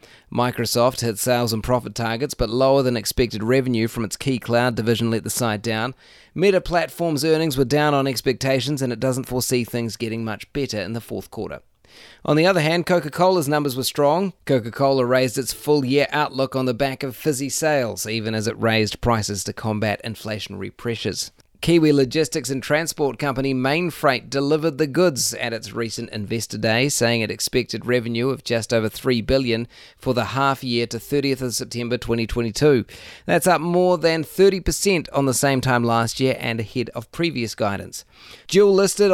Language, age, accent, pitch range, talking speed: English, 30-49, Australian, 115-150 Hz, 180 wpm